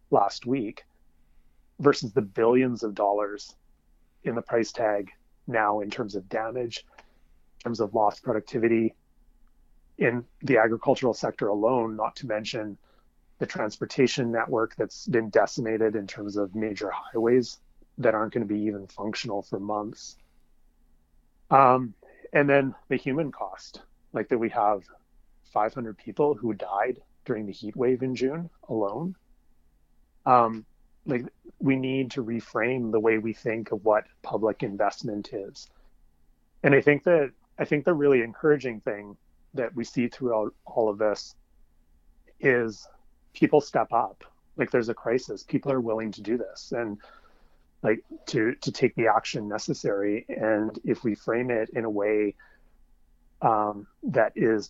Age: 30-49